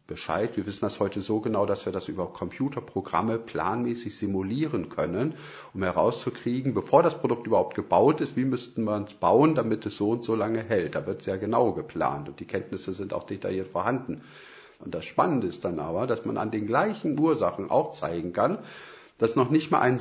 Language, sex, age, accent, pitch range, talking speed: German, male, 40-59, German, 90-120 Hz, 200 wpm